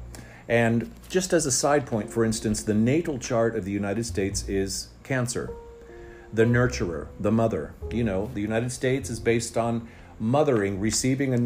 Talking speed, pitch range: 170 wpm, 105-125 Hz